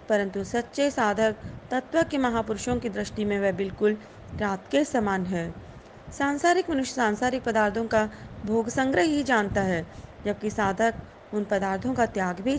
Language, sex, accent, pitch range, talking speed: Hindi, female, native, 200-245 Hz, 155 wpm